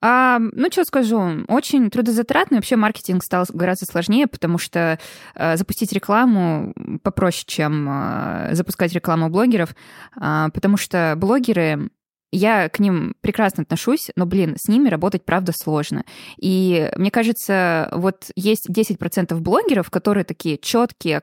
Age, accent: 20-39, native